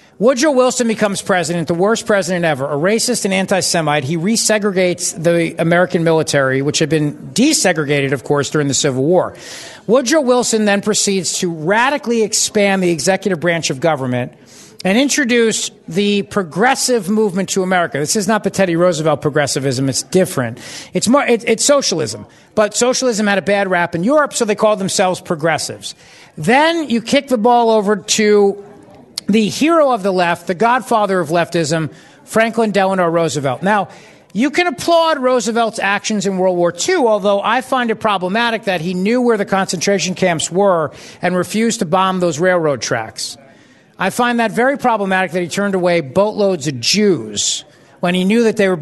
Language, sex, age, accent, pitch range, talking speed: English, male, 50-69, American, 175-225 Hz, 170 wpm